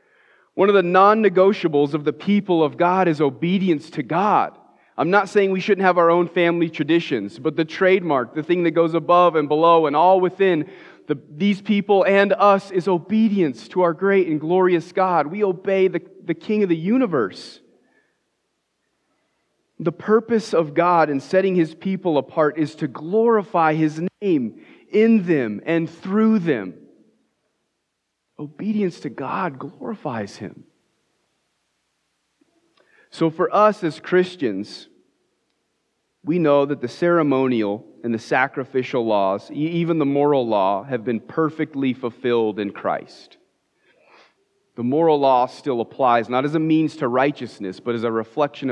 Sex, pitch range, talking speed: male, 140-190 Hz, 145 wpm